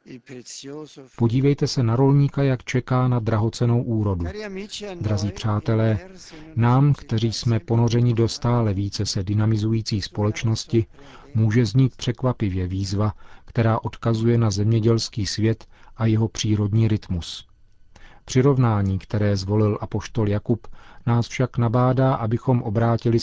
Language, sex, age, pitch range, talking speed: Czech, male, 40-59, 105-120 Hz, 115 wpm